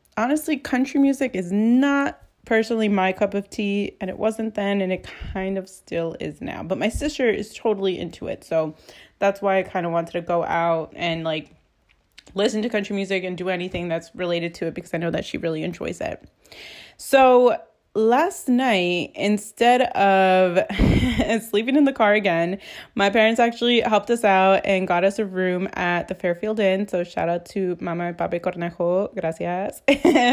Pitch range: 175-220 Hz